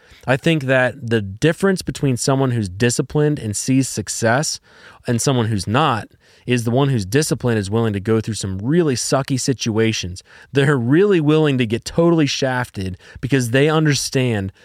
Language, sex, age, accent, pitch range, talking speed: English, male, 30-49, American, 105-135 Hz, 165 wpm